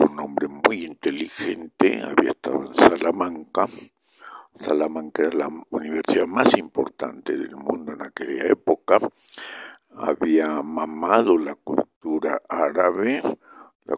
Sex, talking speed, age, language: male, 95 wpm, 60-79, Spanish